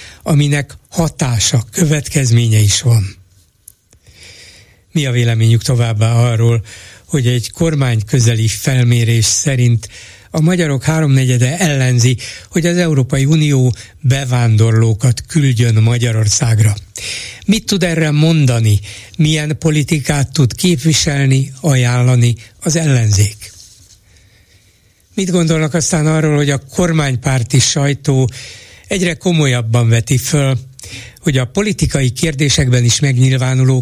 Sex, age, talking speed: male, 60-79, 100 wpm